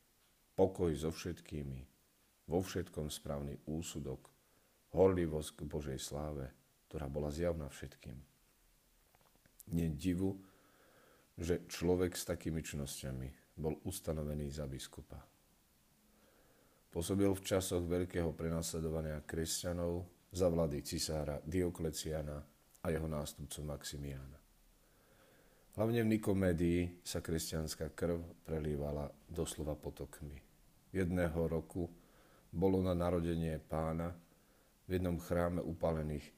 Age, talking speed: 40-59, 95 wpm